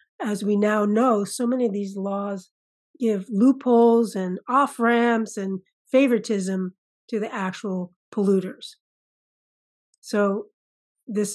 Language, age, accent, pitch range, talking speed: English, 40-59, American, 195-230 Hz, 110 wpm